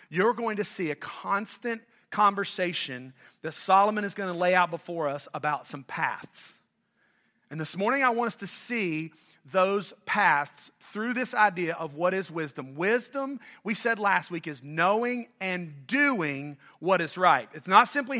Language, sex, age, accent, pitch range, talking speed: English, male, 40-59, American, 165-215 Hz, 170 wpm